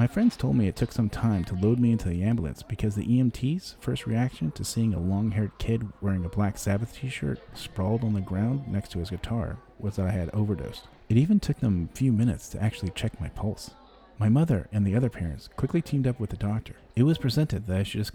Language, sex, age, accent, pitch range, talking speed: English, male, 30-49, American, 95-120 Hz, 240 wpm